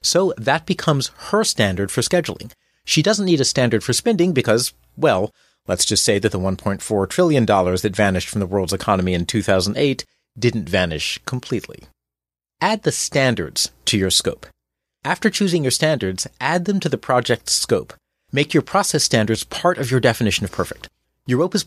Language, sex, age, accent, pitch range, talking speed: English, male, 30-49, American, 100-150 Hz, 170 wpm